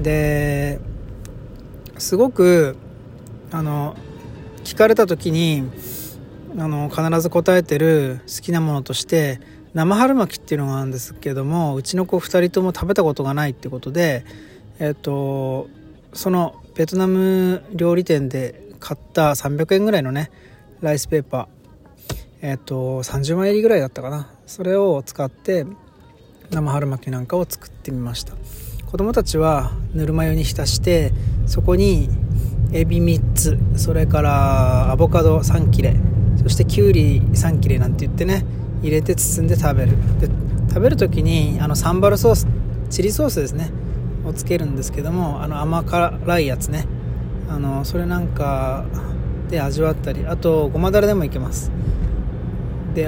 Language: Japanese